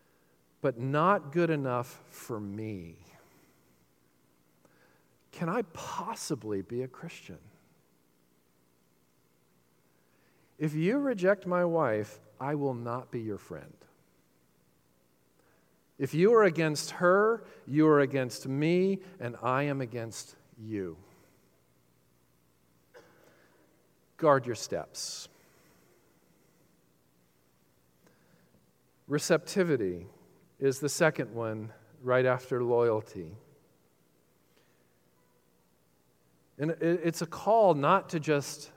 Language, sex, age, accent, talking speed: English, male, 50-69, American, 85 wpm